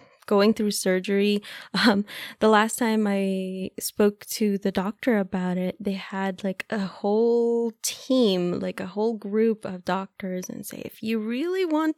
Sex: female